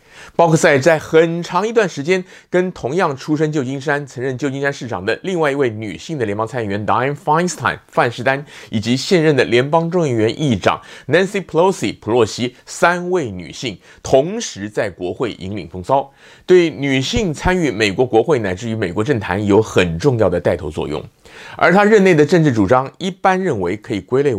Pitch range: 110-165 Hz